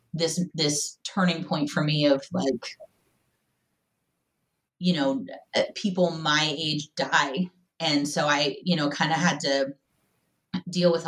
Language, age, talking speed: English, 30-49, 135 wpm